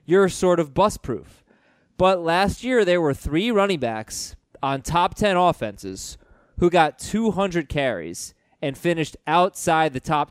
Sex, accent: male, American